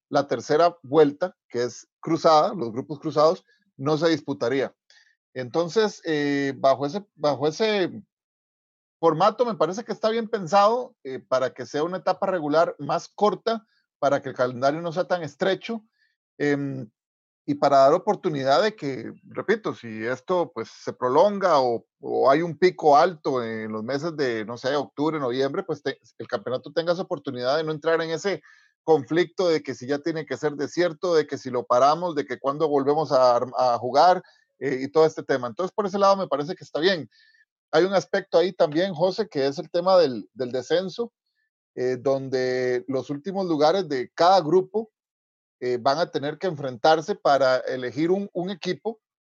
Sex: male